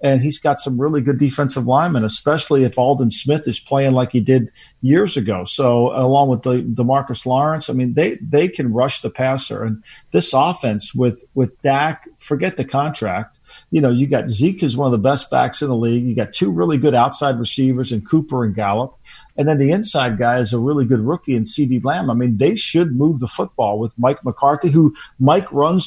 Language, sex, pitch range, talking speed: English, male, 125-145 Hz, 220 wpm